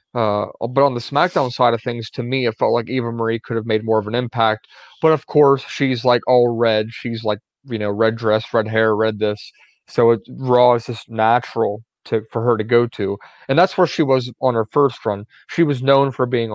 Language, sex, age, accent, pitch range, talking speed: English, male, 30-49, American, 115-130 Hz, 230 wpm